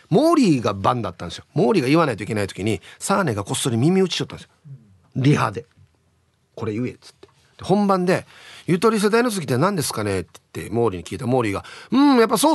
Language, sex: Japanese, male